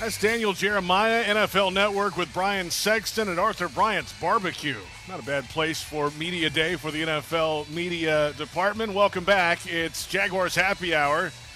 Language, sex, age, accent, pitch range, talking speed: English, male, 40-59, American, 140-175 Hz, 155 wpm